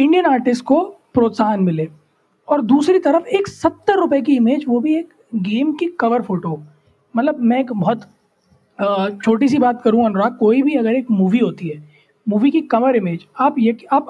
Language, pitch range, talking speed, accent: Hindi, 215-295 Hz, 185 wpm, native